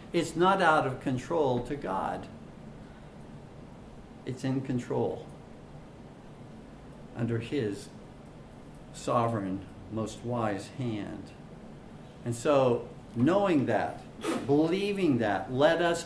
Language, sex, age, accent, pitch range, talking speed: English, male, 50-69, American, 115-135 Hz, 90 wpm